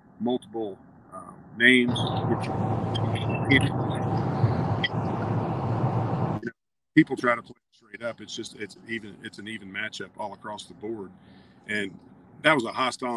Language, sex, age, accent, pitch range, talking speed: English, male, 40-59, American, 105-125 Hz, 125 wpm